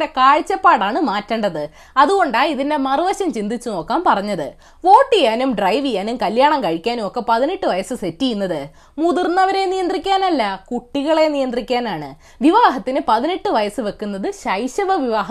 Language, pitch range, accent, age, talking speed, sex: Malayalam, 250-365 Hz, native, 20-39, 110 wpm, female